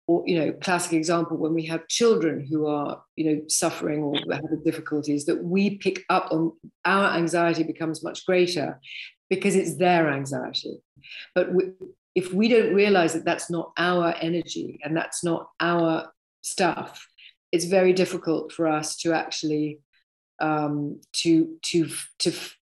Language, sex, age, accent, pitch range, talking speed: English, female, 40-59, British, 160-185 Hz, 155 wpm